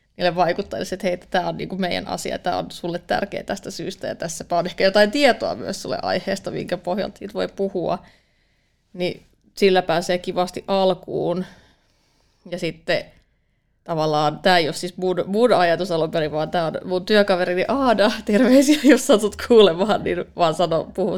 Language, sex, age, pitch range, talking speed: Finnish, female, 30-49, 175-195 Hz, 155 wpm